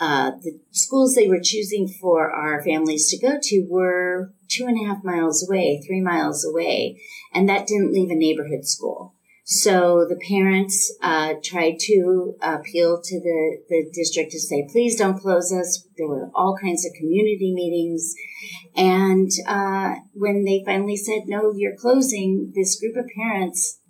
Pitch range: 175-200 Hz